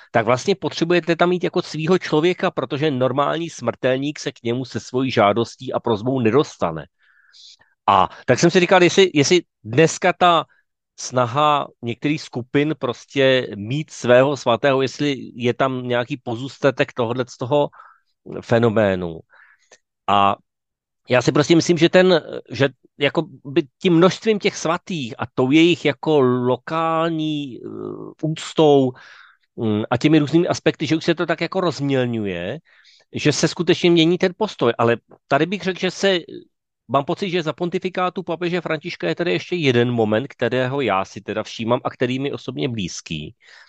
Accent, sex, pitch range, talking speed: native, male, 120-170 Hz, 150 wpm